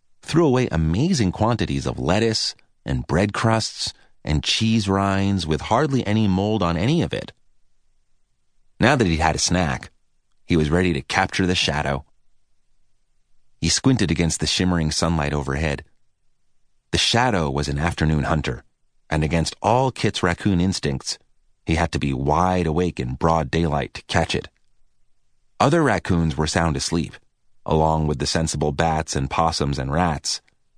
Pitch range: 75-95 Hz